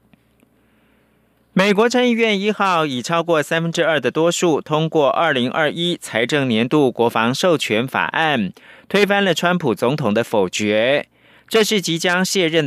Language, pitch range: Chinese, 130-180 Hz